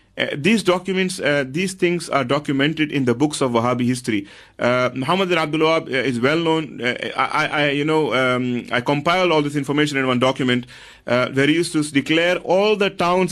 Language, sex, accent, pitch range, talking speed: English, male, Indian, 130-160 Hz, 200 wpm